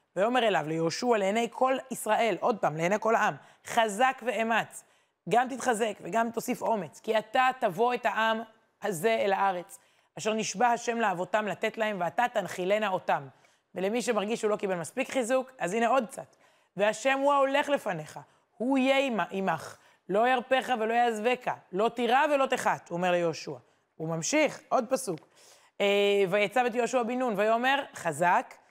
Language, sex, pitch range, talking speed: Hebrew, female, 185-245 Hz, 155 wpm